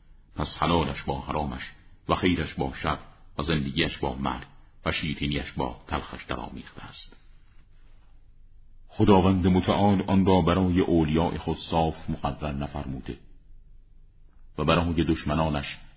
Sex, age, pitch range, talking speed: male, 50-69, 70-90 Hz, 115 wpm